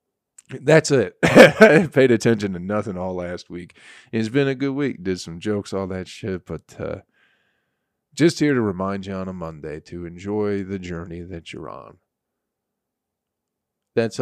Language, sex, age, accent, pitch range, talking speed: English, male, 40-59, American, 90-125 Hz, 165 wpm